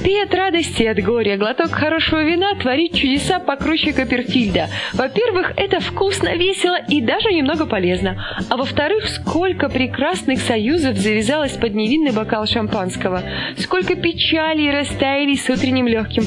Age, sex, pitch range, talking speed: 20-39, female, 240-335 Hz, 135 wpm